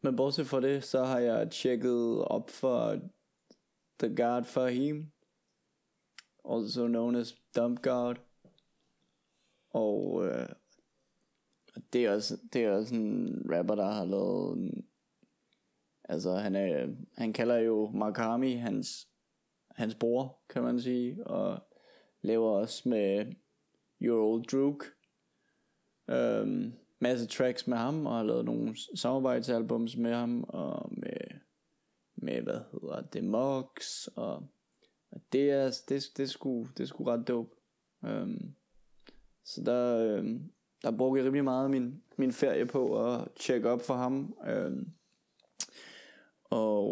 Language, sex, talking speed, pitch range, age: Danish, male, 130 wpm, 115-130 Hz, 20-39